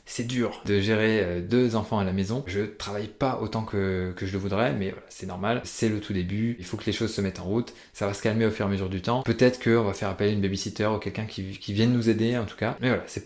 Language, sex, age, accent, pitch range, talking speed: French, male, 20-39, French, 100-125 Hz, 300 wpm